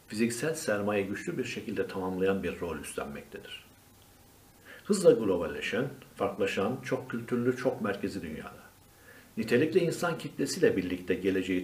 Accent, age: native, 60-79